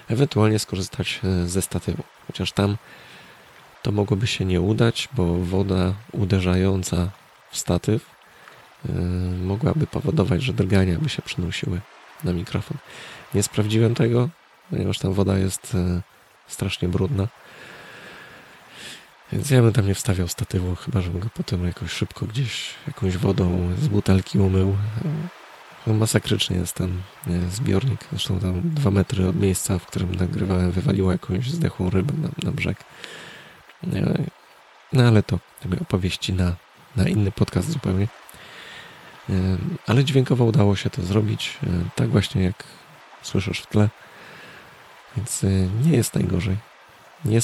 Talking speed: 125 wpm